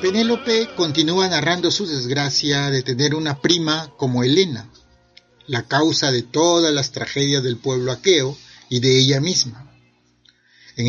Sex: male